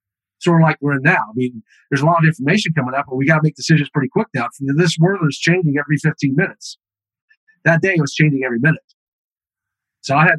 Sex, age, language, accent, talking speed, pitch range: male, 40-59, English, American, 235 wpm, 130-170 Hz